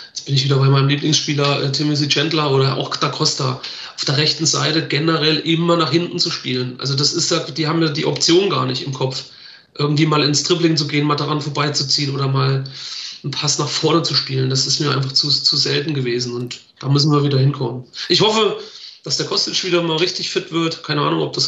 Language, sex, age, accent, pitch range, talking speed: German, male, 40-59, German, 145-165 Hz, 230 wpm